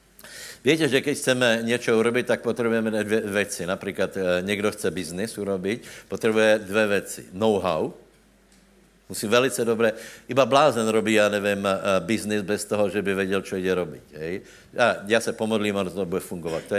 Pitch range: 95-110 Hz